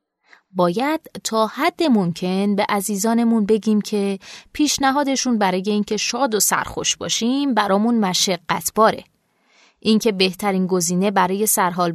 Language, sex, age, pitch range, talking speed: Persian, female, 20-39, 185-245 Hz, 110 wpm